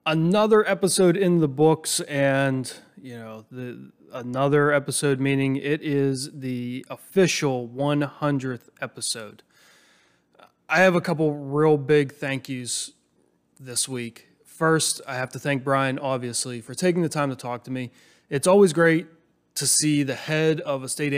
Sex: male